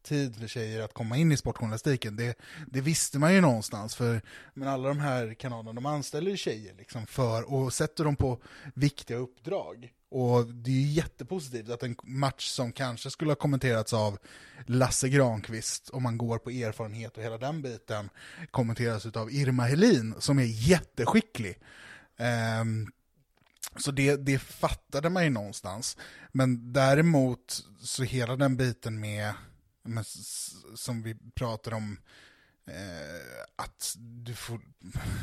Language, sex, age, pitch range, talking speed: Swedish, male, 20-39, 110-140 Hz, 150 wpm